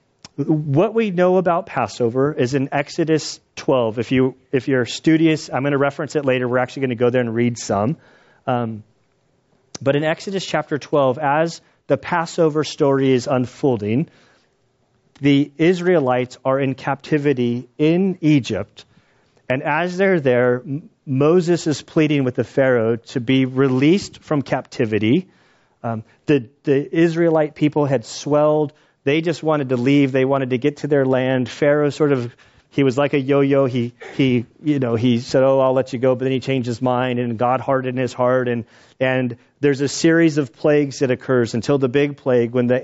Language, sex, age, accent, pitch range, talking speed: English, male, 30-49, American, 125-145 Hz, 180 wpm